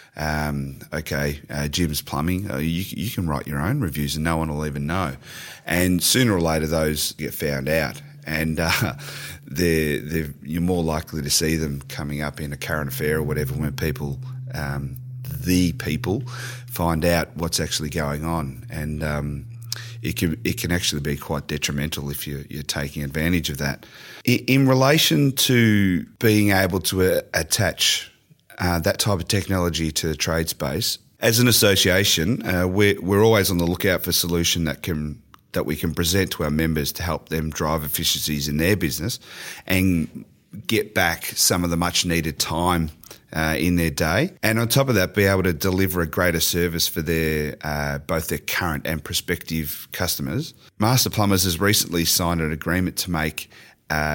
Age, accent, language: 30-49, Australian, English